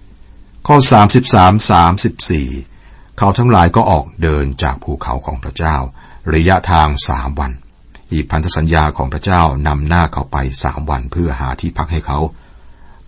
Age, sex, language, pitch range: 60-79, male, Thai, 70-90 Hz